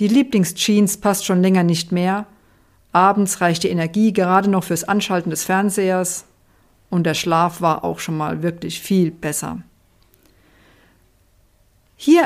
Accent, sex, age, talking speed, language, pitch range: German, female, 50-69, 135 wpm, German, 155-195 Hz